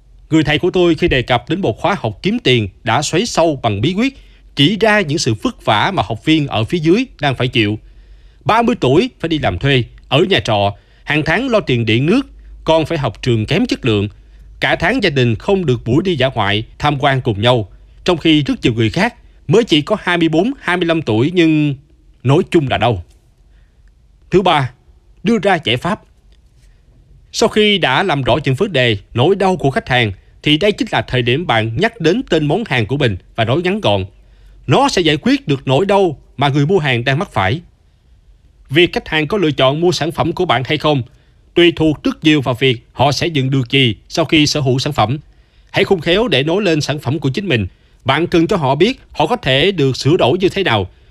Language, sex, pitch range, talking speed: Vietnamese, male, 115-170 Hz, 225 wpm